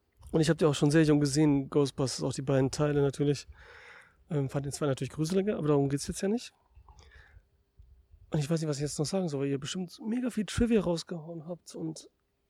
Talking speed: 220 wpm